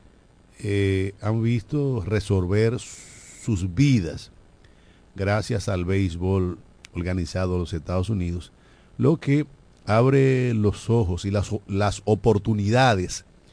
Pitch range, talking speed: 90-110 Hz, 100 wpm